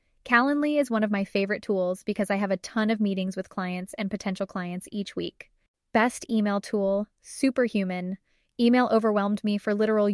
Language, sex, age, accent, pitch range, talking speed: English, female, 10-29, American, 195-225 Hz, 180 wpm